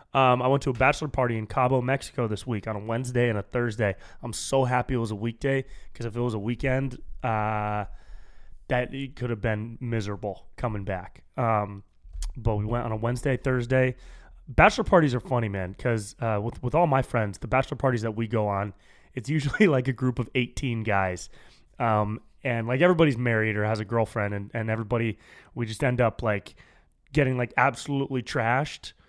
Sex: male